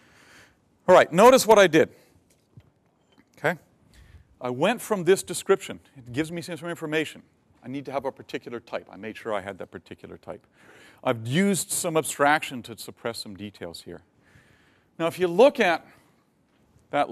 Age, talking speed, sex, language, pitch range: 40-59, 165 wpm, male, English, 115-165 Hz